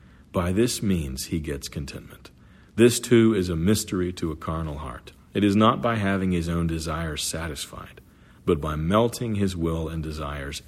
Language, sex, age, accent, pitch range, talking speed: English, male, 50-69, American, 80-105 Hz, 175 wpm